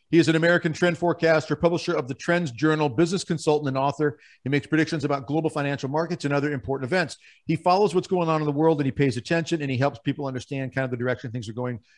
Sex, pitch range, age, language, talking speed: male, 140-190 Hz, 50-69, English, 250 wpm